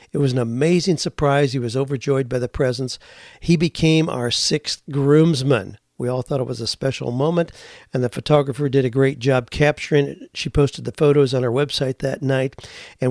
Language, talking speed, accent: English, 195 wpm, American